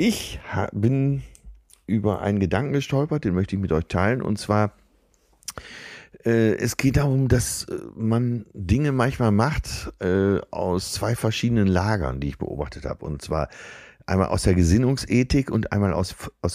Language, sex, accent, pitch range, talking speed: German, male, German, 90-115 Hz, 150 wpm